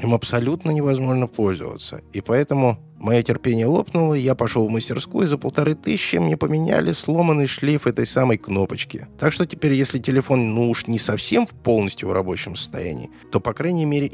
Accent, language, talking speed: native, Russian, 180 wpm